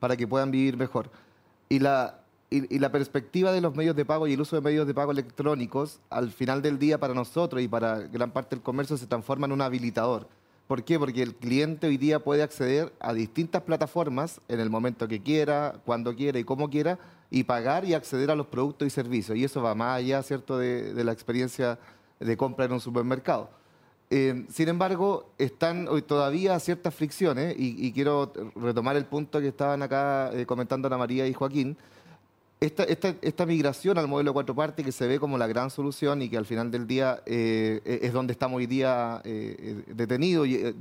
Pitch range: 125-150 Hz